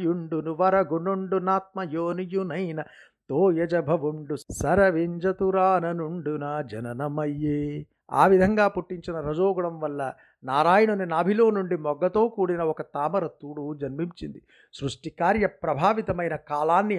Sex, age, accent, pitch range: male, 50-69, native, 150-190 Hz